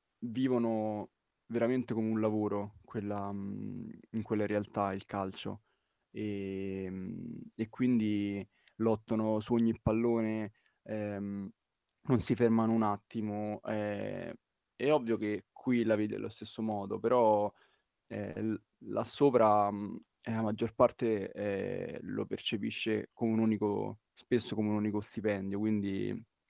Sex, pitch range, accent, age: male, 100-115 Hz, native, 20-39